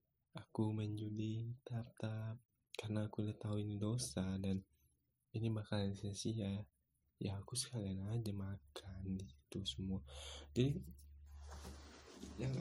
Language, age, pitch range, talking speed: Indonesian, 20-39, 95-115 Hz, 110 wpm